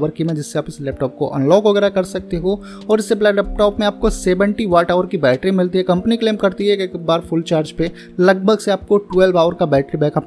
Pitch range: 160-195 Hz